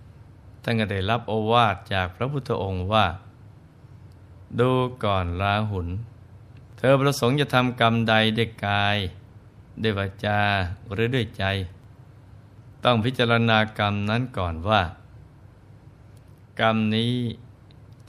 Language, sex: Thai, male